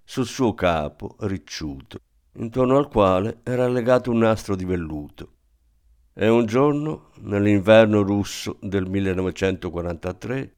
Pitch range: 90-120 Hz